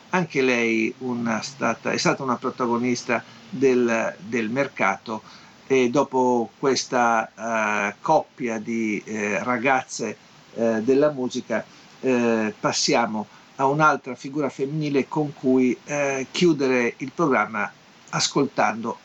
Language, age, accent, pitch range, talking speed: Italian, 50-69, native, 120-150 Hz, 110 wpm